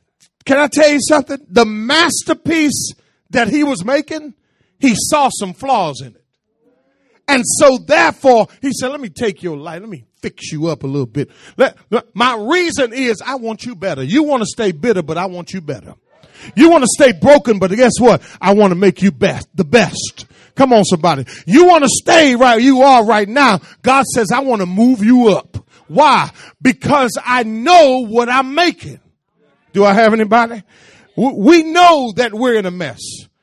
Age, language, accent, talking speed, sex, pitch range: 40-59, English, American, 195 wpm, male, 195-275 Hz